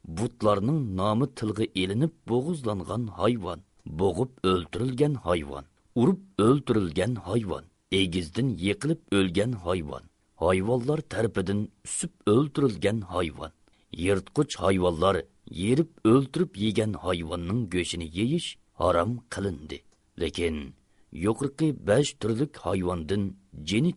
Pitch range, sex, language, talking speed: 95-135 Hz, male, Turkish, 95 wpm